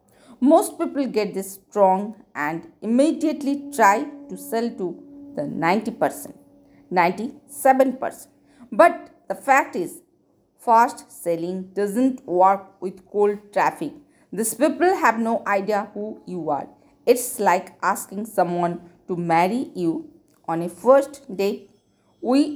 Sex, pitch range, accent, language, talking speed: female, 185-280 Hz, native, Hindi, 125 wpm